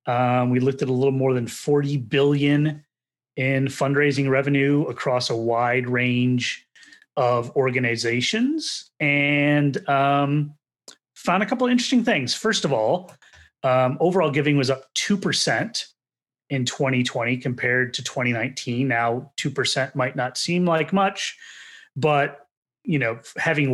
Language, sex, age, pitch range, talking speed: English, male, 30-49, 125-145 Hz, 140 wpm